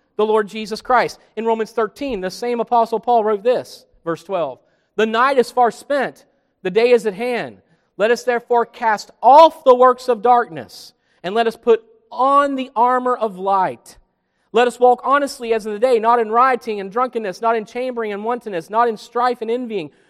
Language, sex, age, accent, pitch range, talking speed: English, male, 40-59, American, 225-280 Hz, 195 wpm